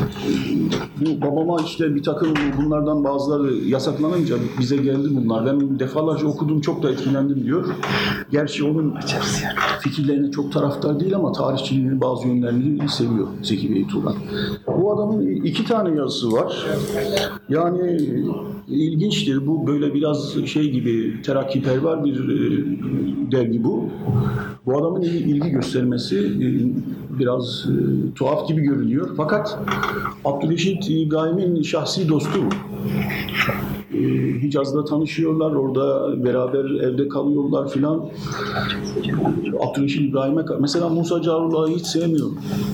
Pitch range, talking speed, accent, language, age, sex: 130-155 Hz, 110 wpm, native, Turkish, 50-69, male